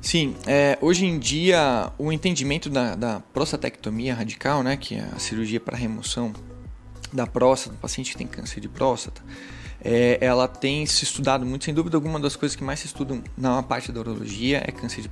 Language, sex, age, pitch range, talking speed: Portuguese, male, 20-39, 120-150 Hz, 185 wpm